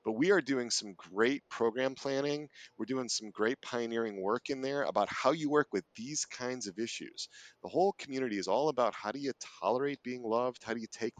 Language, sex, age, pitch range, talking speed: English, male, 40-59, 105-130 Hz, 220 wpm